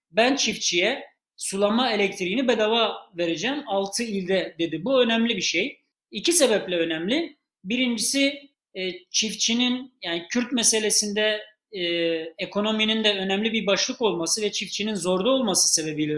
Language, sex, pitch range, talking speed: Turkish, male, 200-255 Hz, 120 wpm